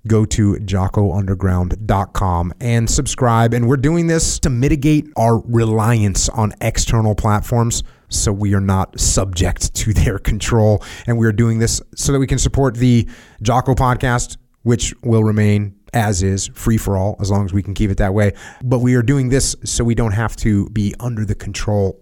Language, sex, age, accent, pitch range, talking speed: English, male, 30-49, American, 95-120 Hz, 185 wpm